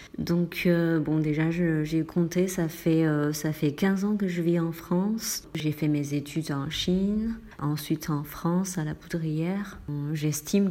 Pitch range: 155-180 Hz